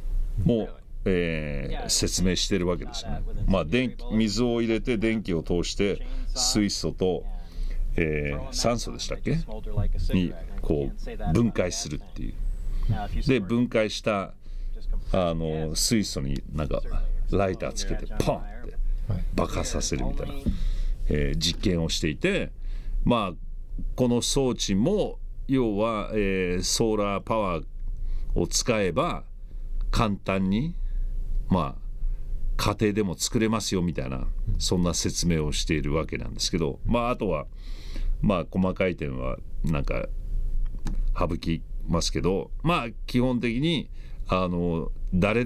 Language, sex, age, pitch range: Japanese, male, 50-69, 80-105 Hz